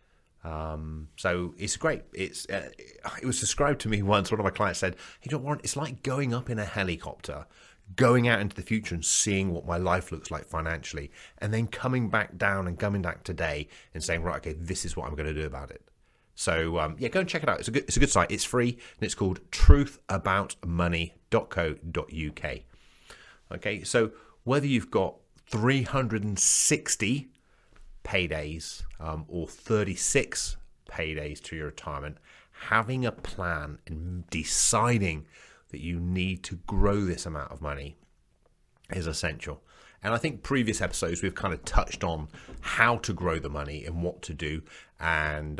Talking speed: 175 wpm